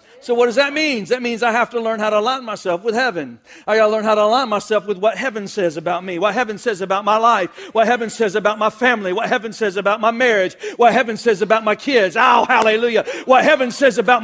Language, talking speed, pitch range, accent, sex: English, 255 wpm, 235-295 Hz, American, male